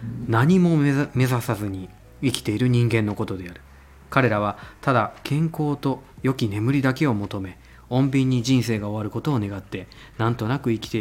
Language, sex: Japanese, male